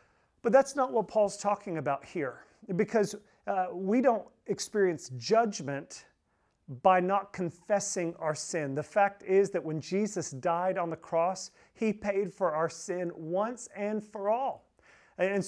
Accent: American